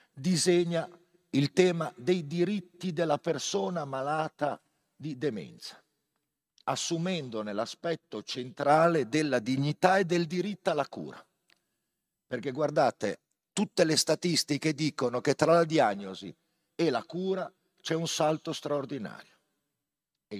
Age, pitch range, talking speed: 50-69, 125-170 Hz, 110 wpm